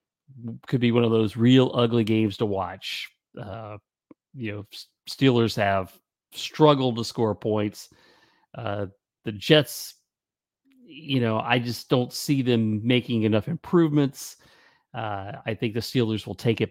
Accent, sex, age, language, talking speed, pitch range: American, male, 40-59, English, 145 wpm, 105-140 Hz